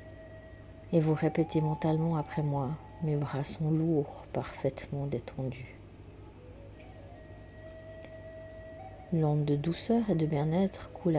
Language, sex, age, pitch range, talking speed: French, female, 40-59, 95-155 Hz, 100 wpm